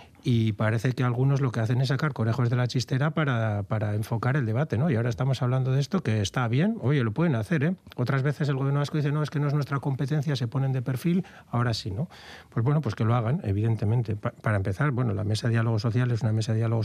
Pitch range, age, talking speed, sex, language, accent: 115-130 Hz, 40-59, 260 wpm, male, Spanish, Spanish